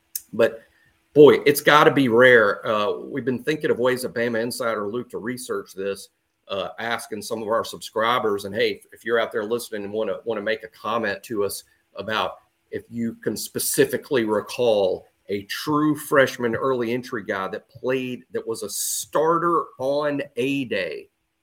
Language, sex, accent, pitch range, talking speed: English, male, American, 115-180 Hz, 170 wpm